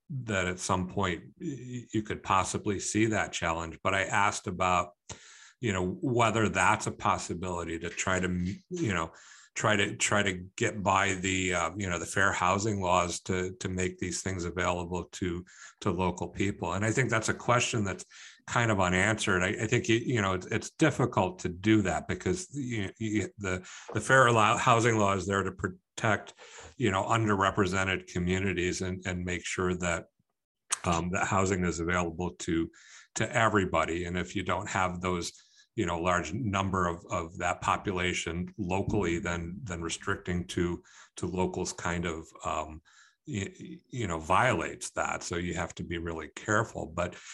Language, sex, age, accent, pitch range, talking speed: English, male, 50-69, American, 90-110 Hz, 175 wpm